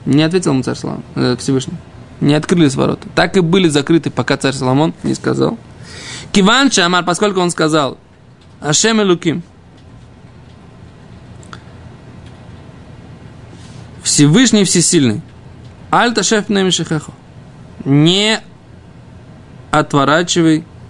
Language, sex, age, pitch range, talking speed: Russian, male, 20-39, 130-165 Hz, 95 wpm